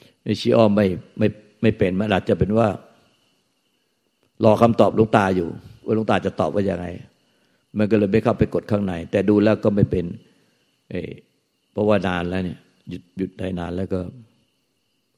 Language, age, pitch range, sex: Thai, 60-79, 95-110 Hz, male